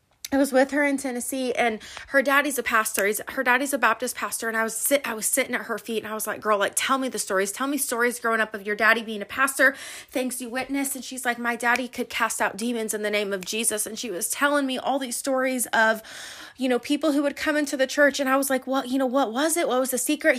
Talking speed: 285 wpm